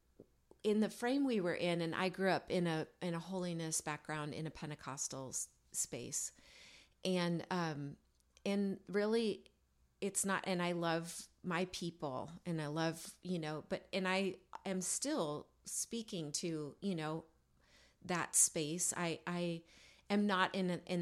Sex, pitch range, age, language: female, 155-190 Hz, 30-49, English